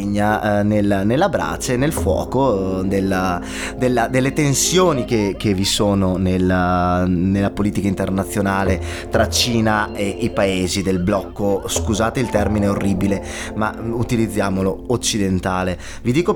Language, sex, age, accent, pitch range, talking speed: Italian, male, 20-39, native, 95-115 Hz, 125 wpm